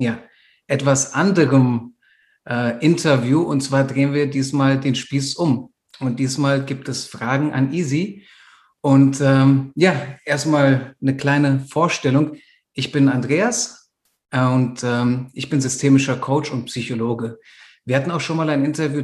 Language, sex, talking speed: German, male, 140 wpm